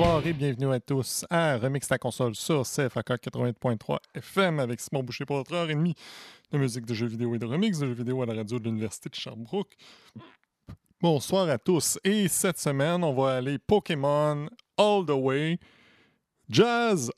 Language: French